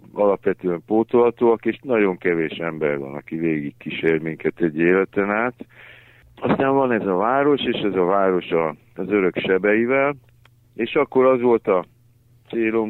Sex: male